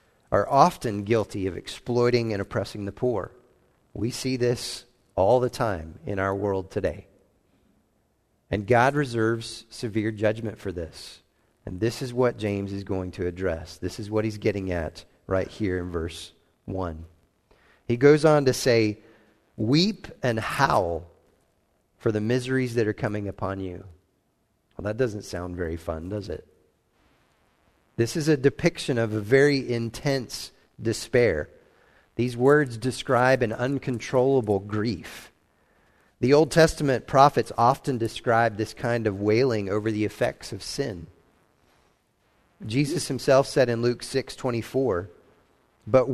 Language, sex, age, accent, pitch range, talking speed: English, male, 40-59, American, 100-125 Hz, 140 wpm